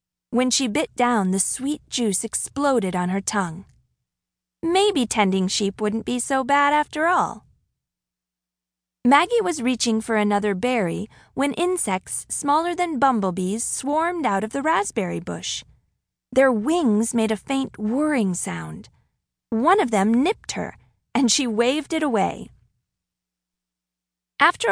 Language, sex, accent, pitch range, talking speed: English, female, American, 195-275 Hz, 135 wpm